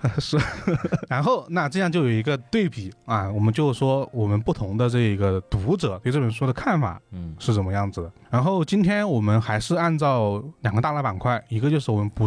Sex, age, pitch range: male, 20-39, 105-140 Hz